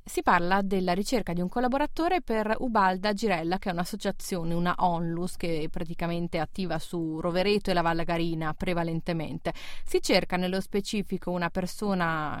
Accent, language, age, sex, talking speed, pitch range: native, Italian, 30-49, female, 155 wpm, 170-235 Hz